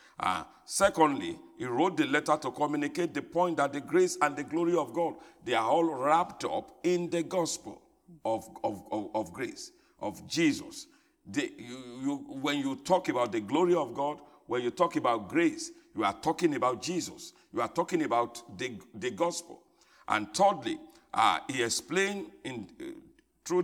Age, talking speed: 50-69, 160 wpm